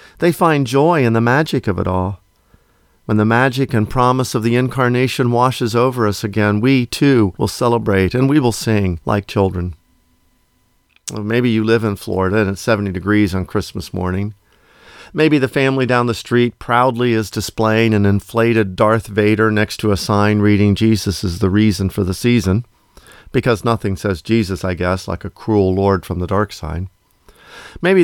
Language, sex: English, male